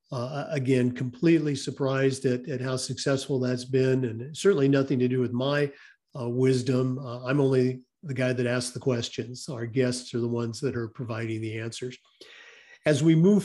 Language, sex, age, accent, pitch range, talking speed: English, male, 50-69, American, 125-150 Hz, 185 wpm